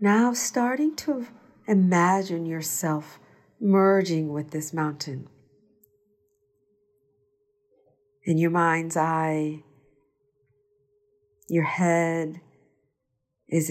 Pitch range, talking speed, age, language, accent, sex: 145-195 Hz, 70 wpm, 50-69, English, American, female